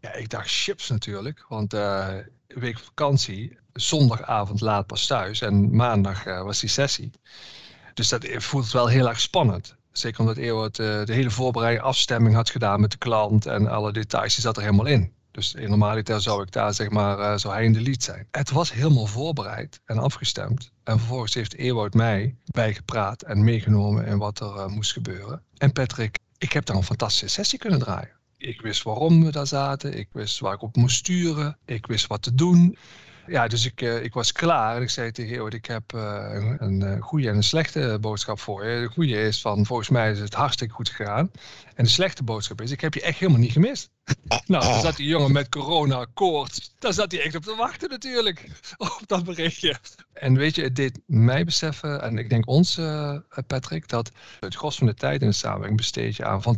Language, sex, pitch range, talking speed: Dutch, male, 110-140 Hz, 210 wpm